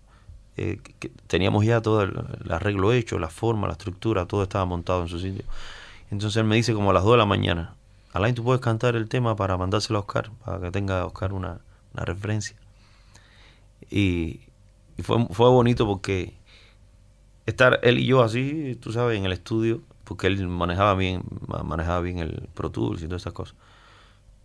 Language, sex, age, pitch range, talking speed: Spanish, male, 30-49, 95-110 Hz, 185 wpm